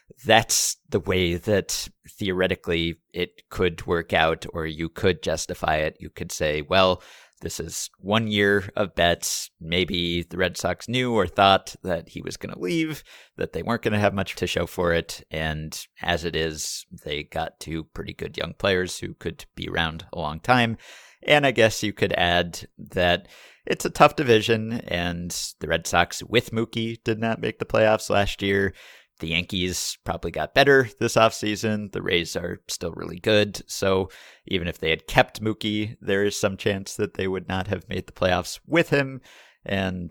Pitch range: 80-105 Hz